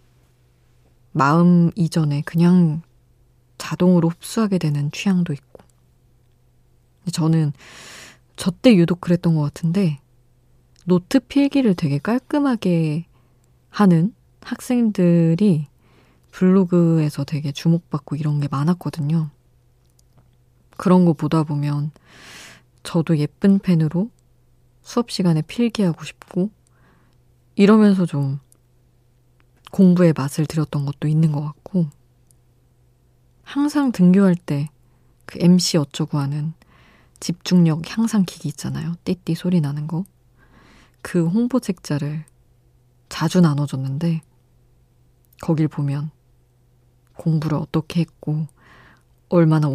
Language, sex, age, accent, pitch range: Korean, female, 20-39, native, 125-175 Hz